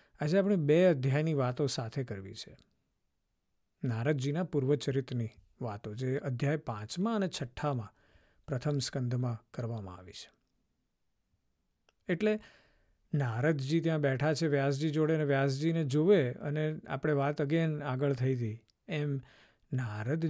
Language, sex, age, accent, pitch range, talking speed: Gujarati, male, 50-69, native, 125-180 Hz, 100 wpm